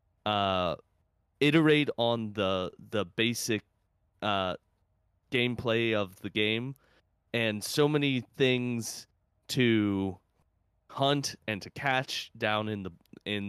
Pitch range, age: 95-125 Hz, 20-39